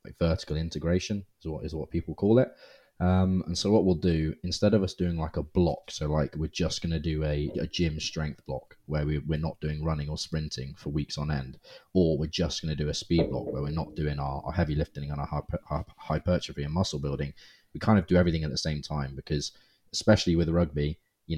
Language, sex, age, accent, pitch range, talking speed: English, male, 20-39, British, 75-90 Hz, 240 wpm